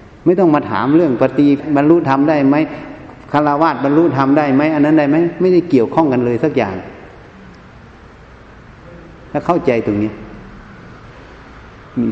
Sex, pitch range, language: male, 120-205 Hz, Thai